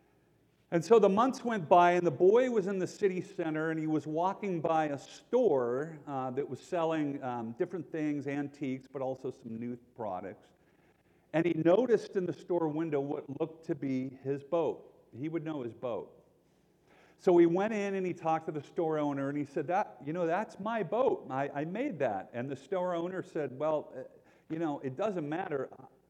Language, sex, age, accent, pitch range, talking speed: English, male, 50-69, American, 135-170 Hz, 200 wpm